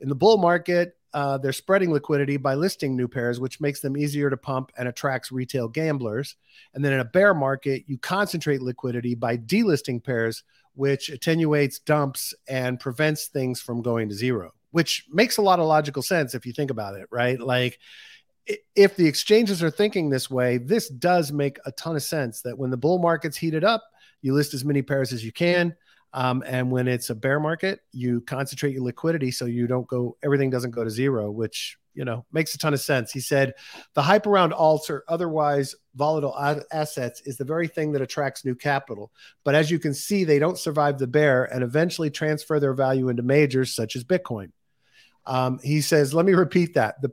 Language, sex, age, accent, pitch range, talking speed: English, male, 40-59, American, 130-160 Hz, 205 wpm